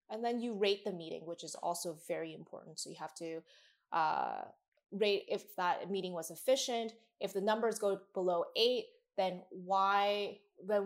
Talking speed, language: 170 wpm, English